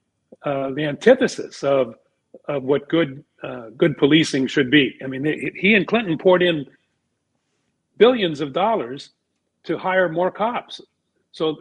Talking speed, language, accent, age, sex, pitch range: 145 wpm, English, American, 40-59, male, 130-165 Hz